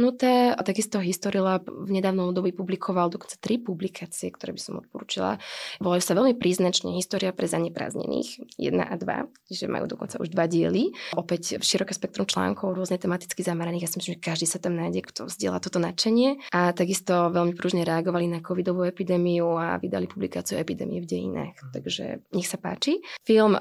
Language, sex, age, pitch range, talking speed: Slovak, female, 20-39, 180-215 Hz, 175 wpm